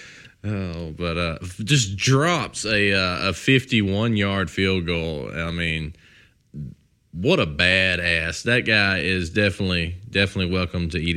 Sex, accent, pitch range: male, American, 80-95 Hz